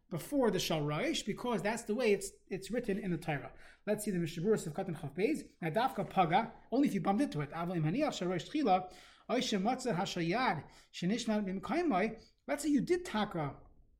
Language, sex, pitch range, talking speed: English, male, 170-225 Hz, 135 wpm